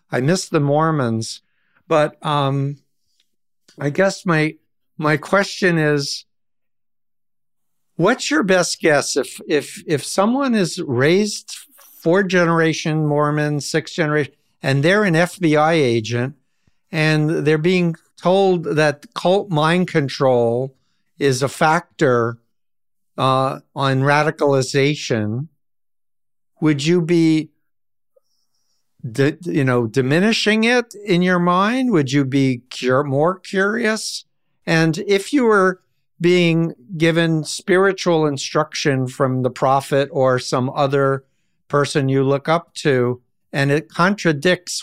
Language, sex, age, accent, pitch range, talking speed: English, male, 60-79, American, 135-175 Hz, 115 wpm